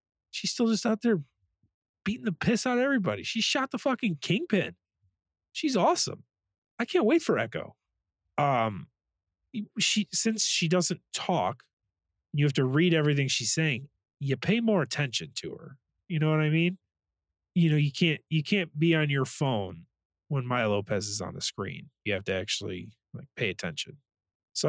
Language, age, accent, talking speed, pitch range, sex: English, 30-49, American, 175 wpm, 115-180 Hz, male